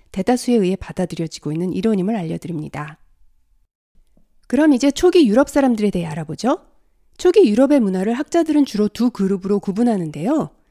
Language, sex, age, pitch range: Korean, female, 40-59, 180-280 Hz